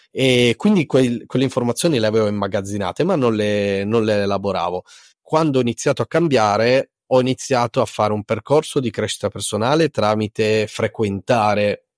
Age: 20-39